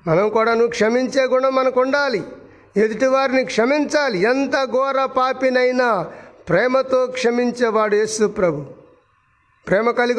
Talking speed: 105 wpm